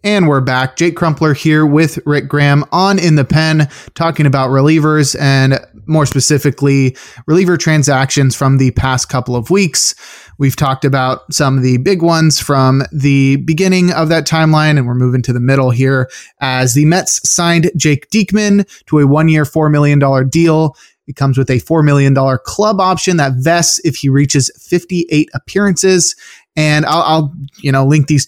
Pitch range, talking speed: 135-160 Hz, 175 wpm